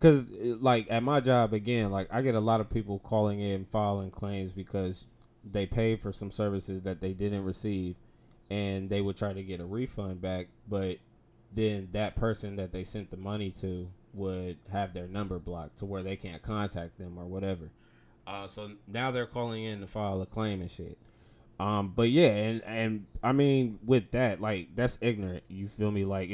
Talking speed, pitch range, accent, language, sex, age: 200 wpm, 100-115 Hz, American, English, male, 20-39